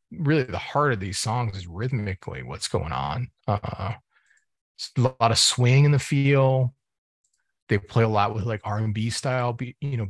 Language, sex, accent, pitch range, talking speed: English, male, American, 105-120 Hz, 180 wpm